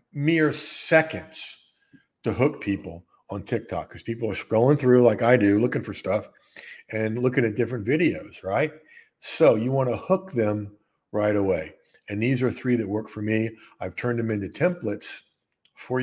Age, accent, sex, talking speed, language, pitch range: 50-69, American, male, 170 wpm, English, 105-155 Hz